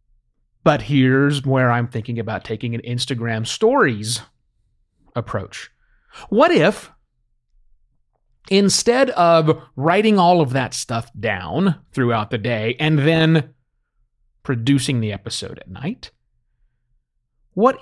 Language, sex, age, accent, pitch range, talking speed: English, male, 30-49, American, 120-170 Hz, 110 wpm